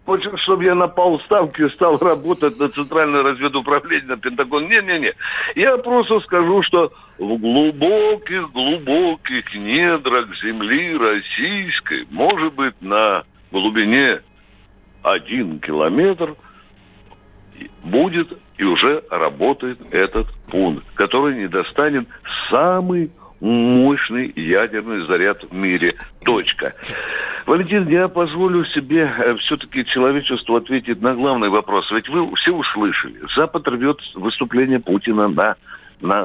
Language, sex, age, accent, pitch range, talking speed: Russian, male, 60-79, native, 120-180 Hz, 105 wpm